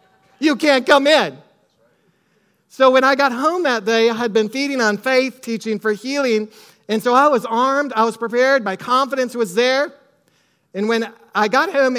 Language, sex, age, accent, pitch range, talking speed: English, male, 40-59, American, 220-260 Hz, 185 wpm